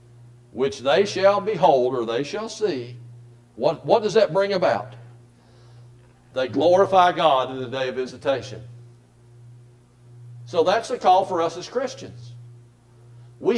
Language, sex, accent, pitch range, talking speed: English, male, American, 120-160 Hz, 135 wpm